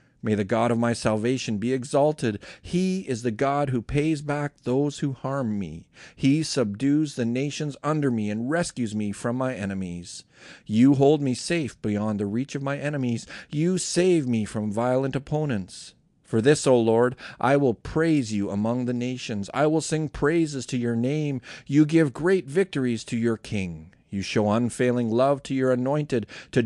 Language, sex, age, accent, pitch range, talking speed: English, male, 40-59, American, 105-145 Hz, 180 wpm